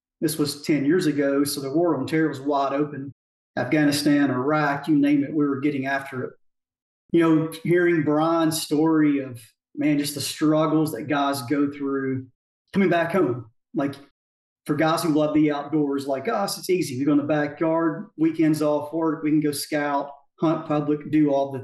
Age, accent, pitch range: 40-59, American, 140-160 Hz